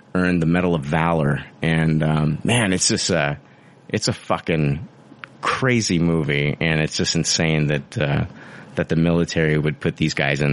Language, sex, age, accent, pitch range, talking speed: English, male, 30-49, American, 80-115 Hz, 170 wpm